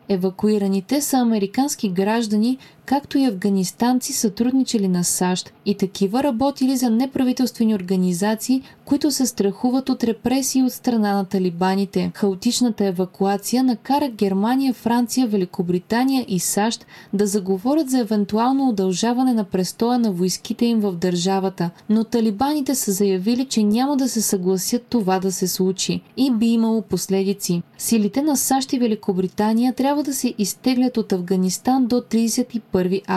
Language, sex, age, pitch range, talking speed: Bulgarian, female, 20-39, 195-255 Hz, 135 wpm